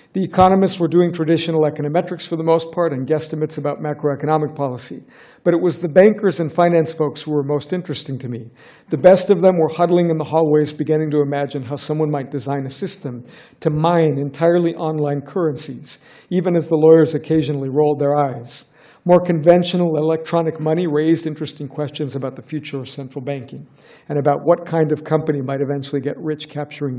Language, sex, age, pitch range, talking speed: English, male, 50-69, 145-170 Hz, 185 wpm